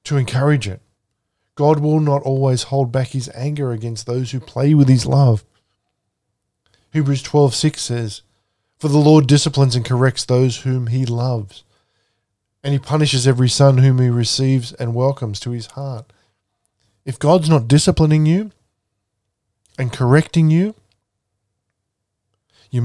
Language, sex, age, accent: English, male, 20-39, Australian